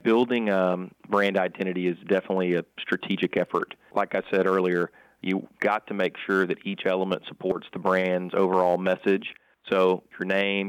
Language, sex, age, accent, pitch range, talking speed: English, male, 30-49, American, 90-95 Hz, 165 wpm